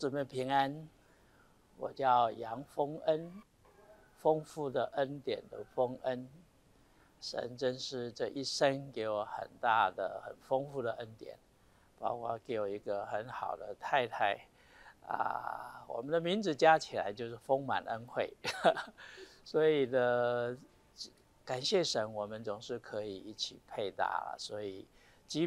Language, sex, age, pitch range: Chinese, male, 60-79, 110-140 Hz